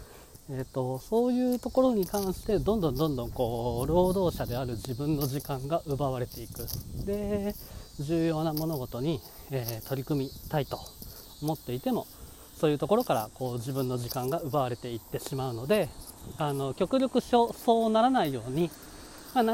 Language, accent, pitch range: Japanese, native, 130-200 Hz